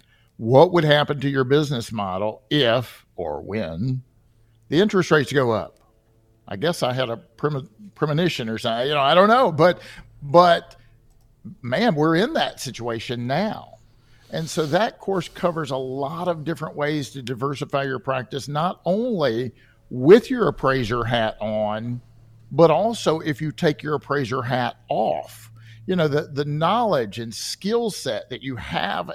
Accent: American